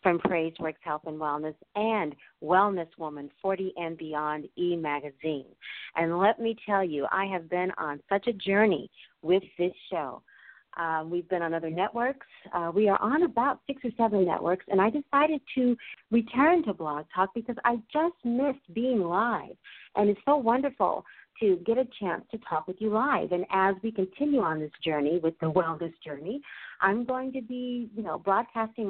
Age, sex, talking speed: 50-69, female, 185 wpm